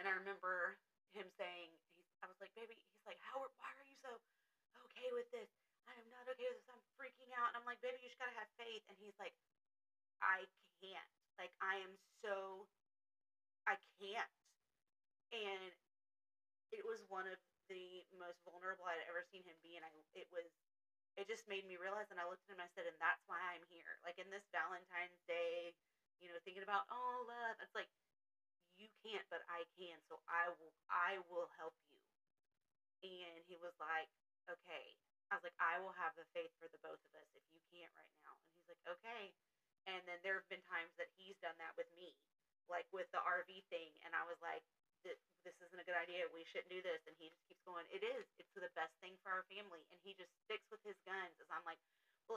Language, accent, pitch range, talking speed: English, American, 175-230 Hz, 220 wpm